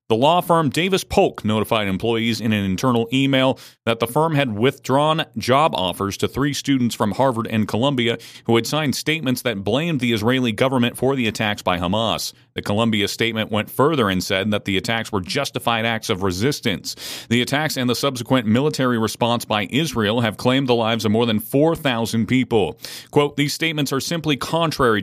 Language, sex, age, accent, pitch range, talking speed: English, male, 40-59, American, 105-130 Hz, 185 wpm